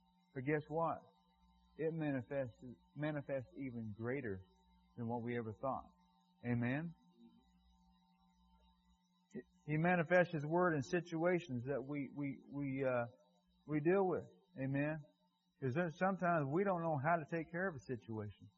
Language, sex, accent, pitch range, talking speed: English, male, American, 115-175 Hz, 130 wpm